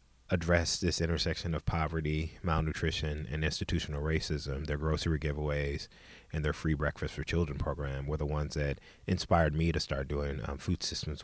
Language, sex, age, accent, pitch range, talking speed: English, male, 30-49, American, 75-85 Hz, 165 wpm